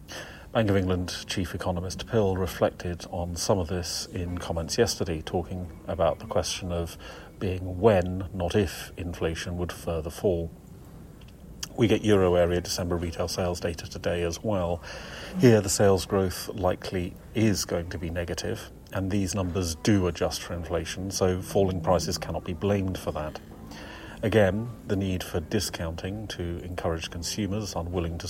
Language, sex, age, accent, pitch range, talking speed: English, male, 40-59, British, 85-100 Hz, 155 wpm